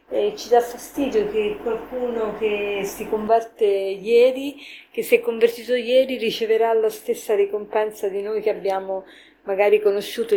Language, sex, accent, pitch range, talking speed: Italian, female, native, 195-320 Hz, 145 wpm